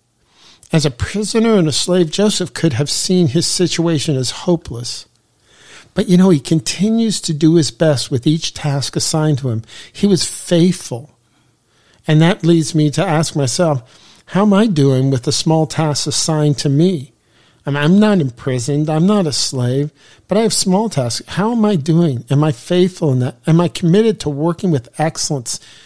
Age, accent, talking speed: 50-69, American, 180 wpm